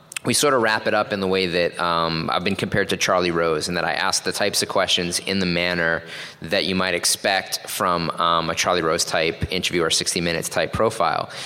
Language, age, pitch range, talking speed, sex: English, 20-39, 85-95 Hz, 230 wpm, male